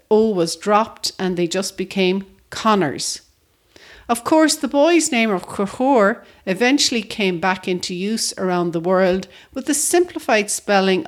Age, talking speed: 50-69, 145 wpm